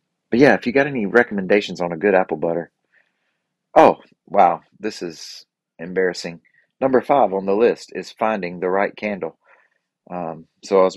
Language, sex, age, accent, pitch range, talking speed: English, male, 30-49, American, 90-115 Hz, 170 wpm